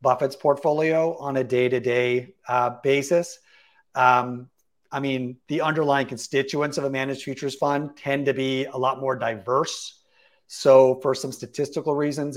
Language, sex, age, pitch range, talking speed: English, male, 40-59, 125-145 Hz, 140 wpm